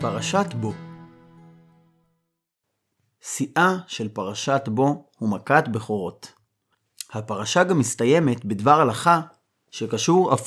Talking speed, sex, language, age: 90 wpm, male, Hebrew, 30-49